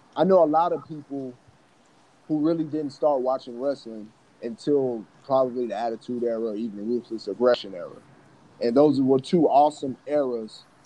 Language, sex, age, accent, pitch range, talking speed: English, male, 30-49, American, 115-140 Hz, 160 wpm